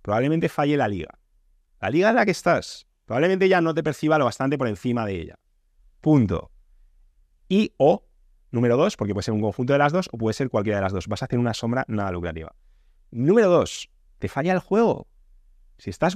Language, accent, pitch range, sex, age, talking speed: English, Spanish, 100-155 Hz, male, 30-49, 210 wpm